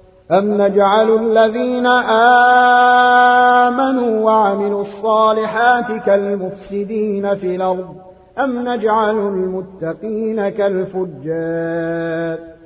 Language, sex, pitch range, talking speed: Arabic, male, 185-225 Hz, 60 wpm